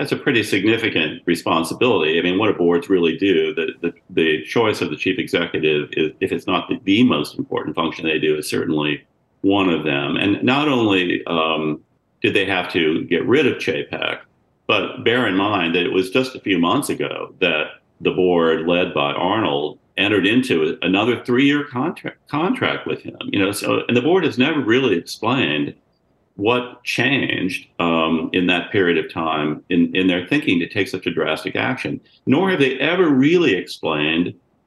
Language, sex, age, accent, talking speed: English, male, 40-59, American, 180 wpm